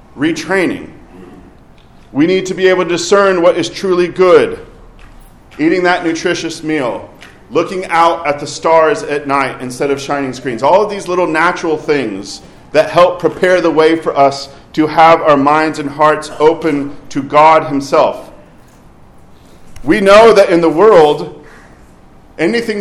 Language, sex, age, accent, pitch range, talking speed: English, male, 40-59, American, 145-185 Hz, 150 wpm